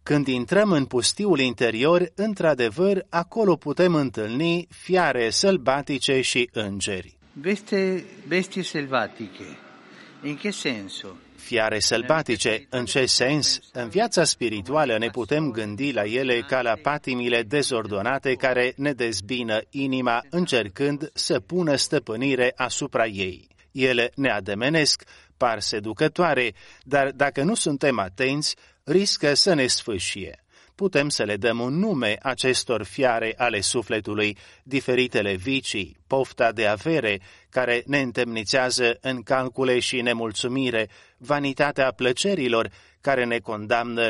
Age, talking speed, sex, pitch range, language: 30-49, 110 wpm, male, 115-150 Hz, Romanian